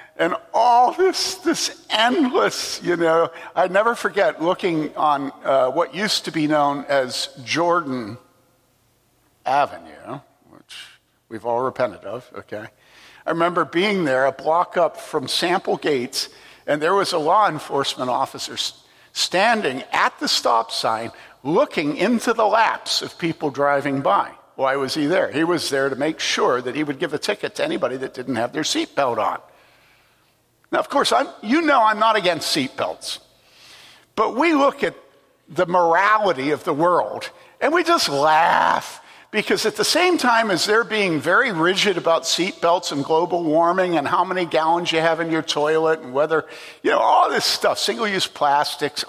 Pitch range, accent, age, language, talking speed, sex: 150-205 Hz, American, 60-79, English, 165 wpm, male